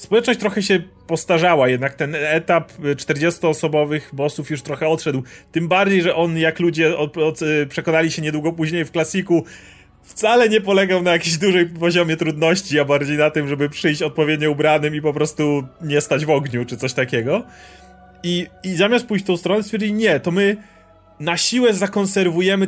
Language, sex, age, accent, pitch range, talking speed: Polish, male, 30-49, native, 145-175 Hz, 175 wpm